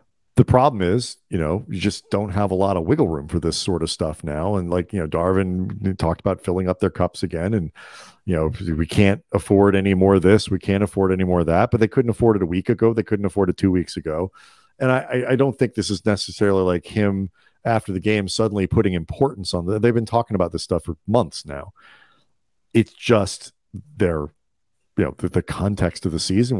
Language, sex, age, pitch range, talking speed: English, male, 40-59, 90-110 Hz, 230 wpm